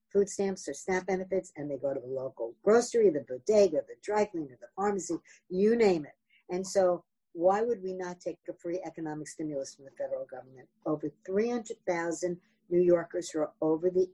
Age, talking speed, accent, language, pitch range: 50-69, 190 wpm, American, English, 170-225 Hz